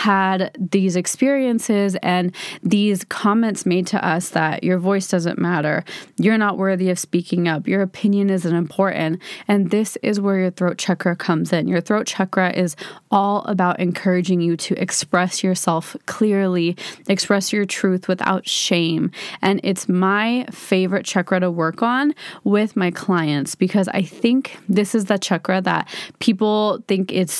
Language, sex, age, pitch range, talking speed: English, female, 20-39, 180-210 Hz, 160 wpm